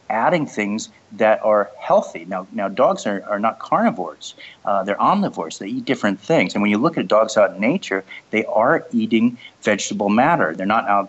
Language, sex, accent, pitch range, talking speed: English, male, American, 95-105 Hz, 195 wpm